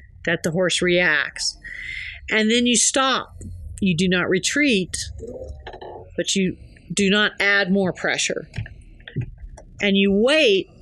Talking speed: 120 wpm